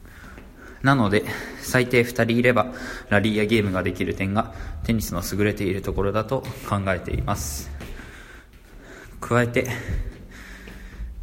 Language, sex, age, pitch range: Japanese, male, 20-39, 85-110 Hz